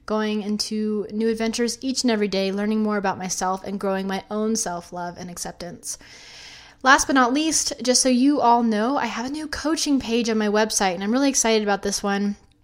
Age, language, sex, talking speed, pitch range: 20-39, English, female, 210 wpm, 200-245 Hz